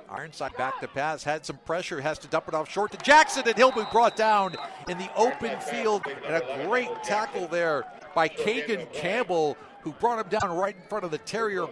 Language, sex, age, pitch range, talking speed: English, male, 50-69, 150-235 Hz, 215 wpm